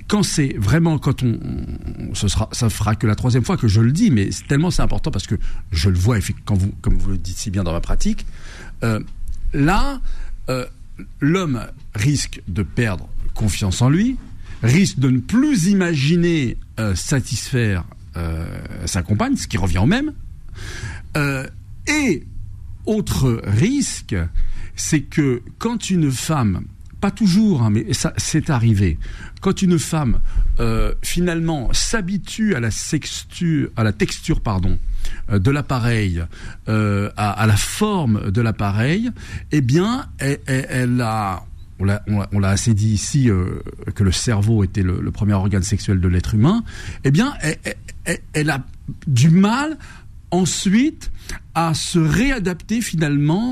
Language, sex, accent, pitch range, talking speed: French, male, French, 100-150 Hz, 160 wpm